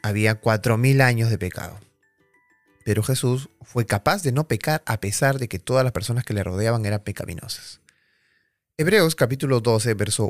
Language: Spanish